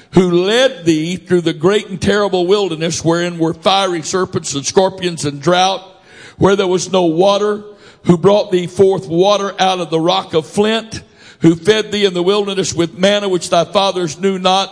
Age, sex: 60-79, male